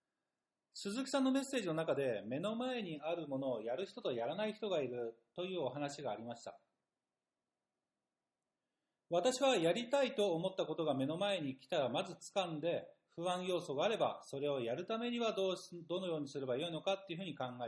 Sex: male